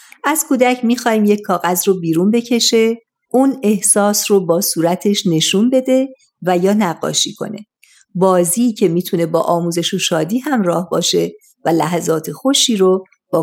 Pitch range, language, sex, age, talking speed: 170-225 Hz, Persian, female, 50-69, 150 wpm